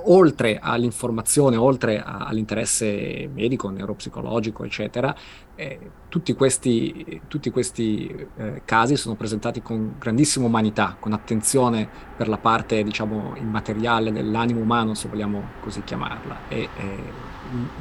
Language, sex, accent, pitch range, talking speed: Italian, male, native, 110-125 Hz, 115 wpm